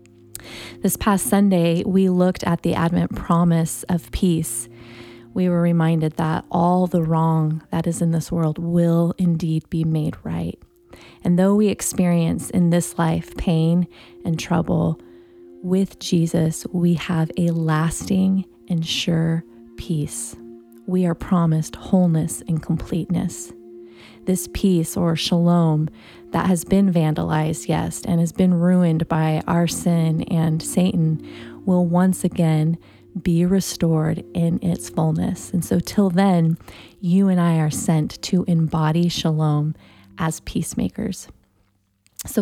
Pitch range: 155-180 Hz